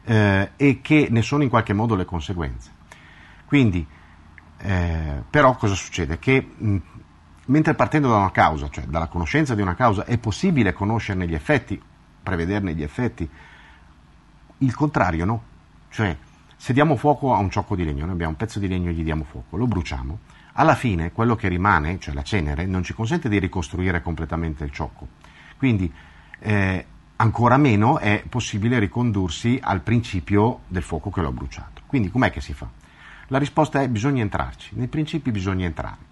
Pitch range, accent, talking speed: 85-125 Hz, native, 170 wpm